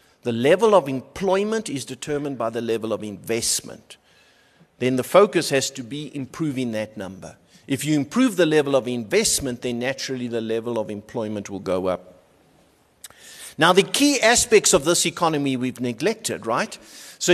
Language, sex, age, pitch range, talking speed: English, male, 50-69, 125-180 Hz, 165 wpm